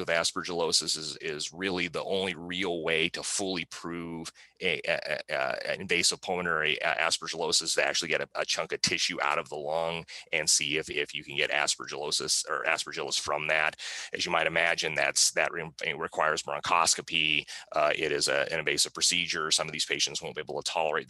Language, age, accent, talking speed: Italian, 30-49, American, 190 wpm